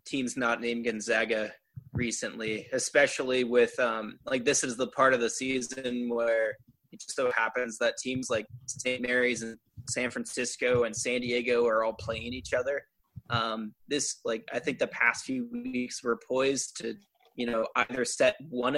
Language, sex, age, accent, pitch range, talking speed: English, male, 20-39, American, 115-135 Hz, 175 wpm